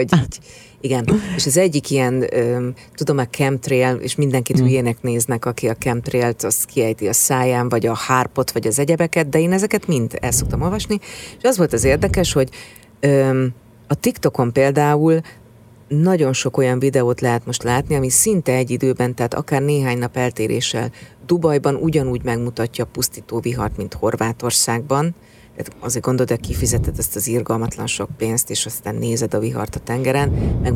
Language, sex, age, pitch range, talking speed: Hungarian, female, 40-59, 115-140 Hz, 160 wpm